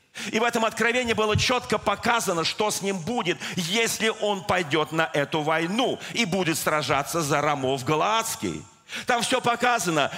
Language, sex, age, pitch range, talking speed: Russian, male, 40-59, 180-235 Hz, 155 wpm